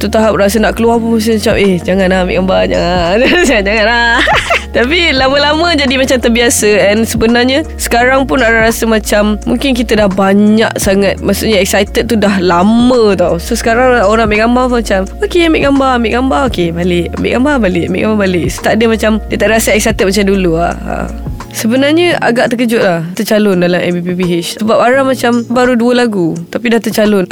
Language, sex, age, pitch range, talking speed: Malay, female, 20-39, 195-255 Hz, 180 wpm